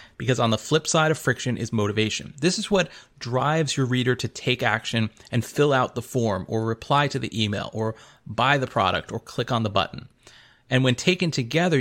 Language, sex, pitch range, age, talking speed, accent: English, male, 115-150 Hz, 30-49, 210 wpm, American